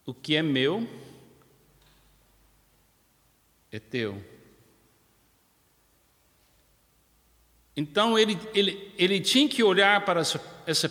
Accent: Brazilian